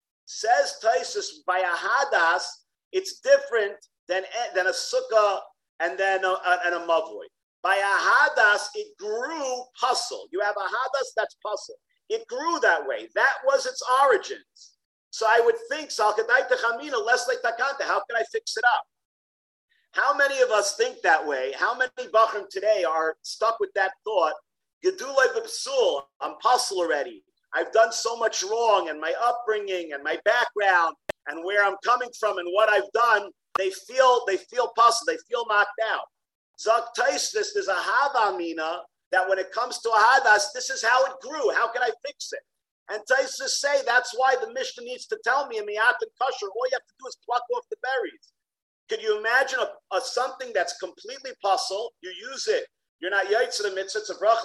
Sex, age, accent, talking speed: male, 50-69, American, 175 wpm